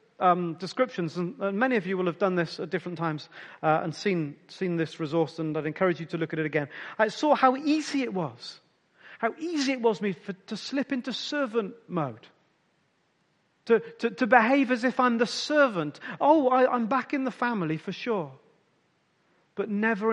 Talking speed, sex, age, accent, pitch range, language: 195 wpm, male, 40-59, British, 155-215 Hz, English